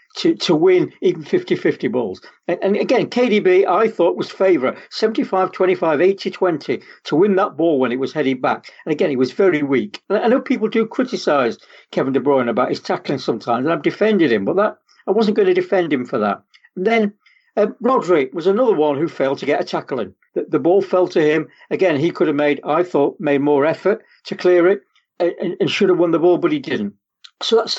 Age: 60-79